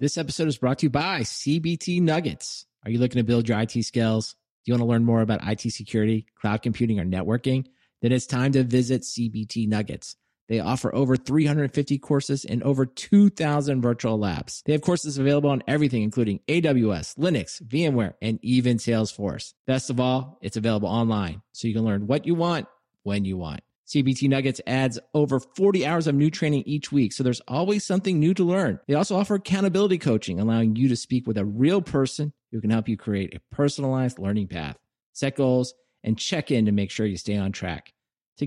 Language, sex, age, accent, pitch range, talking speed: English, male, 30-49, American, 110-145 Hz, 200 wpm